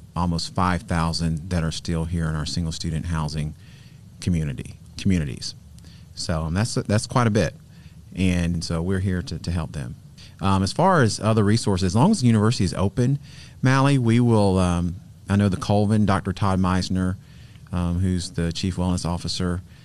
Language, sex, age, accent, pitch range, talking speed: English, male, 30-49, American, 85-100 Hz, 170 wpm